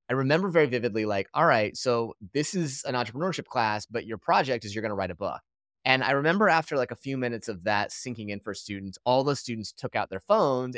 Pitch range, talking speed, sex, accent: 110-160 Hz, 245 wpm, male, American